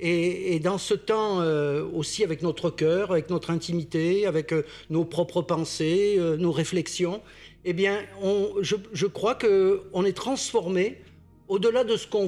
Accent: French